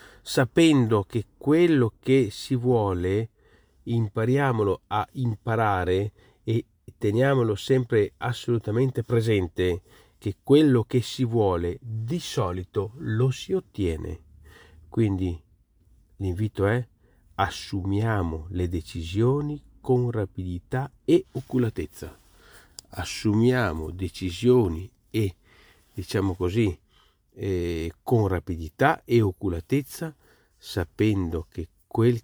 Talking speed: 85 wpm